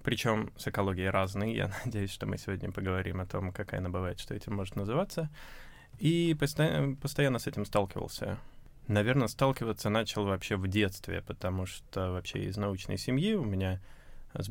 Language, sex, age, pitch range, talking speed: Russian, male, 20-39, 95-120 Hz, 165 wpm